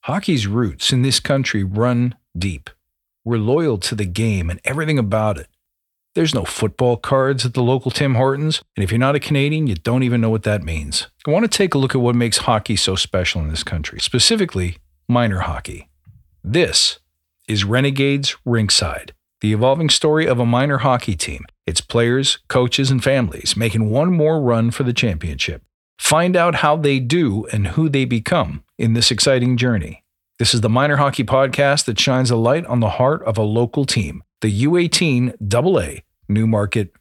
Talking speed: 185 wpm